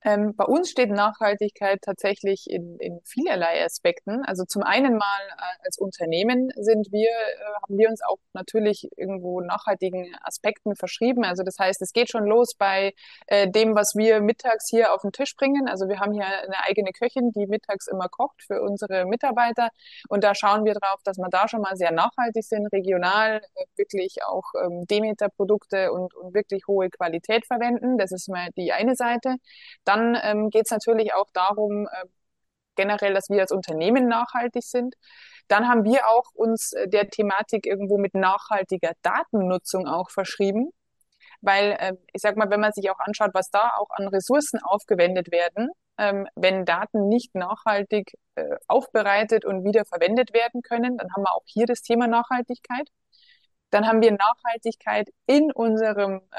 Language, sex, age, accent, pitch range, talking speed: German, female, 20-39, German, 195-235 Hz, 160 wpm